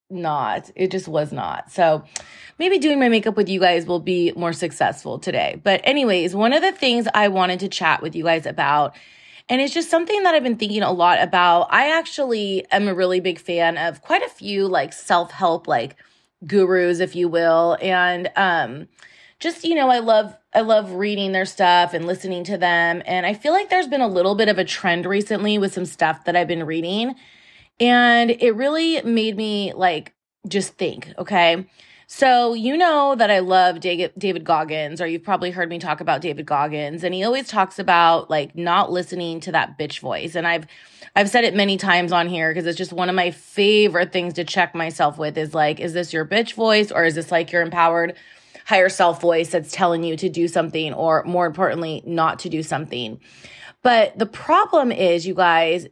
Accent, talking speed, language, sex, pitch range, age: American, 205 wpm, English, female, 170-215 Hz, 20-39